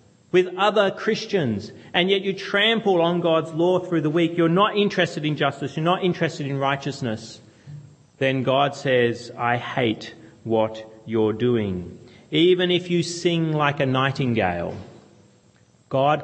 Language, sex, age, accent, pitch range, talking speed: English, male, 30-49, Australian, 110-155 Hz, 145 wpm